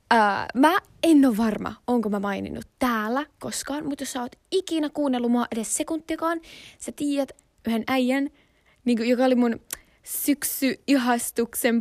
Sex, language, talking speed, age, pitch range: female, Finnish, 140 wpm, 20-39, 225-300 Hz